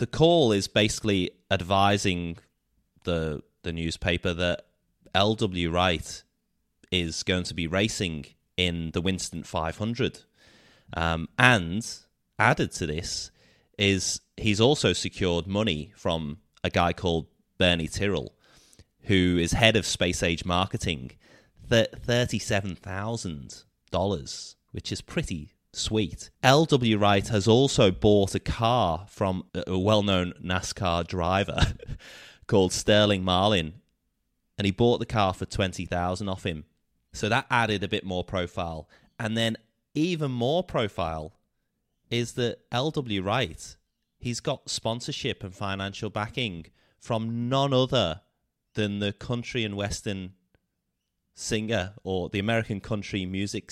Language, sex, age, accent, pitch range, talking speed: English, male, 30-49, British, 90-115 Hz, 125 wpm